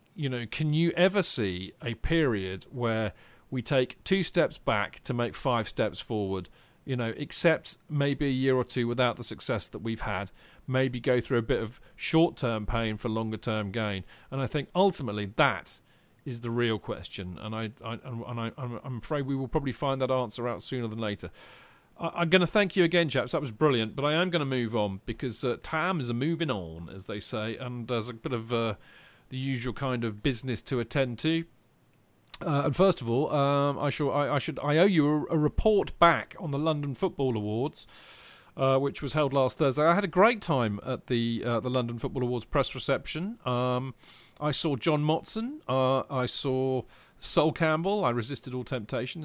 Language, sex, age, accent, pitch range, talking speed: English, male, 40-59, British, 115-150 Hz, 200 wpm